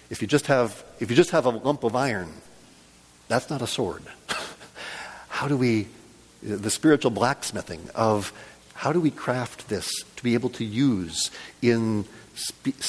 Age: 40-59